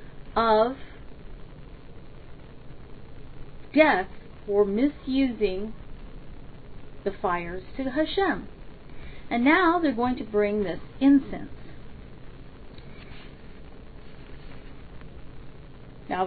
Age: 40-59